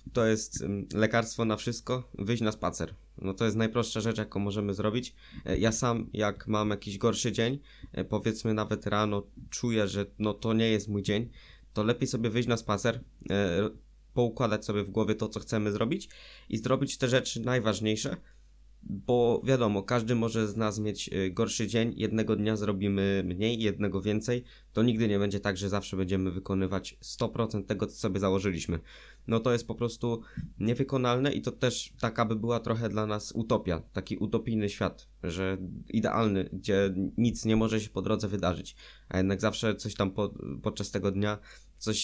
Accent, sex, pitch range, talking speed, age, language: native, male, 100-115 Hz, 175 wpm, 20-39, Polish